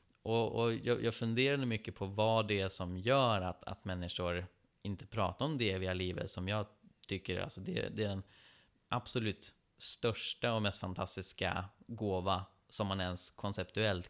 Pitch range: 90-110 Hz